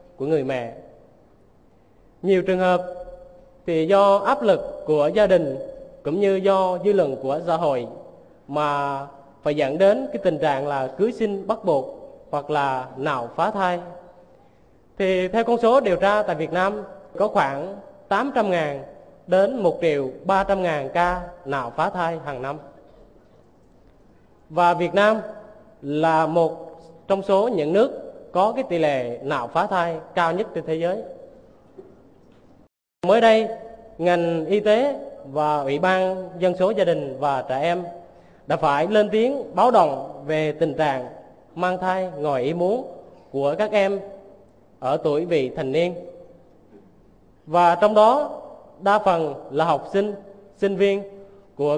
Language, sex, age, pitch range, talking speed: Vietnamese, male, 20-39, 150-200 Hz, 150 wpm